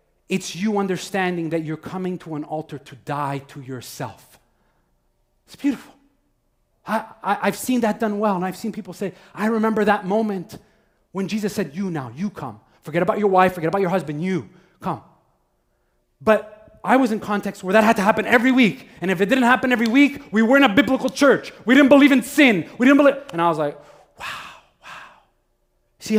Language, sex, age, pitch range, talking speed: English, male, 30-49, 165-225 Hz, 195 wpm